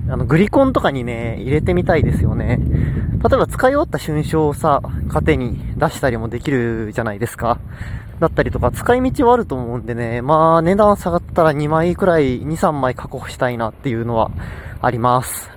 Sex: male